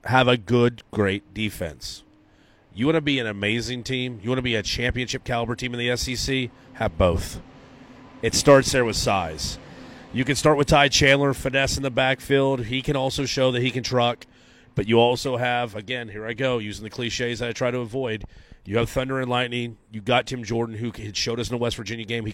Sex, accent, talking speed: male, American, 220 wpm